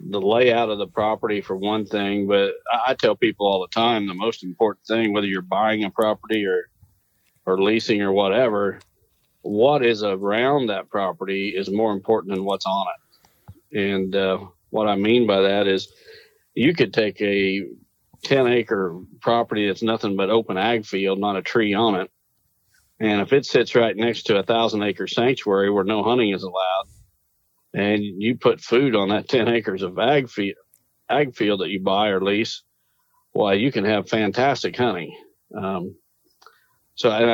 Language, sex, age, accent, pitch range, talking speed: English, male, 50-69, American, 95-110 Hz, 180 wpm